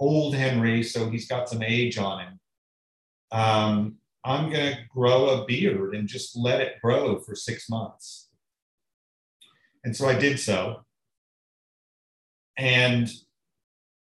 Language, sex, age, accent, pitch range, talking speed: English, male, 40-59, American, 105-130 Hz, 130 wpm